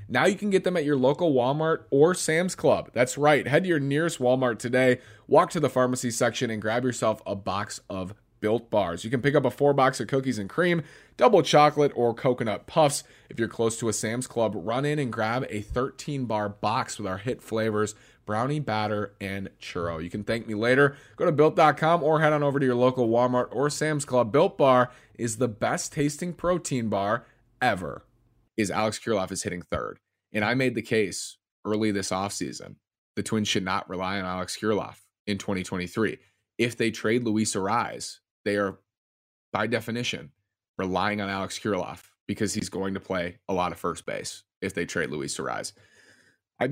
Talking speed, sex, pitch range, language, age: 195 wpm, male, 105-135 Hz, English, 20-39